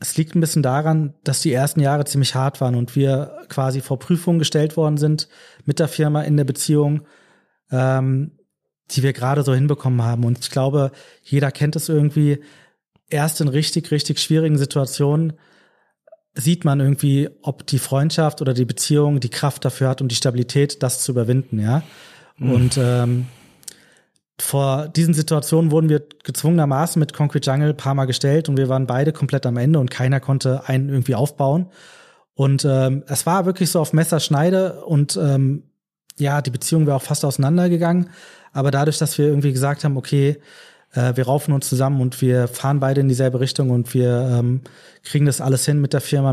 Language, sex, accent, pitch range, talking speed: German, male, German, 130-155 Hz, 185 wpm